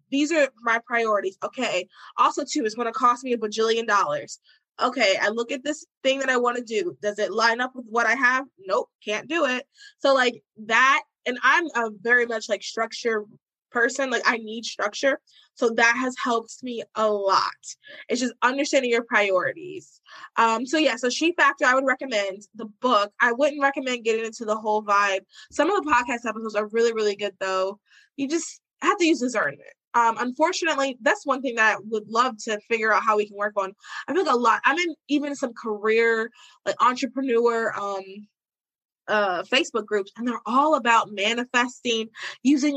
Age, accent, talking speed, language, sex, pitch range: 20-39, American, 195 wpm, English, female, 220-280 Hz